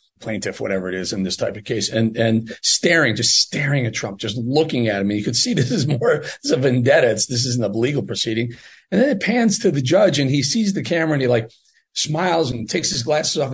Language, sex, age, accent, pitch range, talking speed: English, male, 40-59, American, 115-145 Hz, 245 wpm